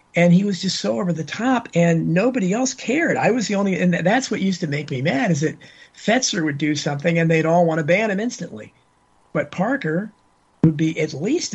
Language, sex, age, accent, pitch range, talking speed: English, male, 50-69, American, 155-195 Hz, 230 wpm